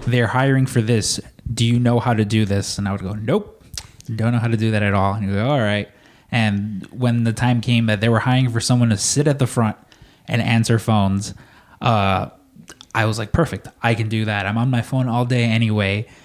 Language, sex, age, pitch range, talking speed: English, male, 20-39, 110-125 Hz, 235 wpm